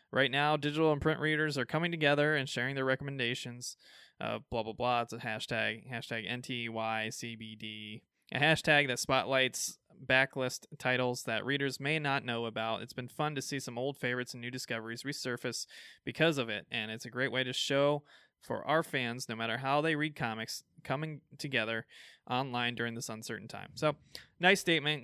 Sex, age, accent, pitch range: male, 20-39, American, 115-145 Hz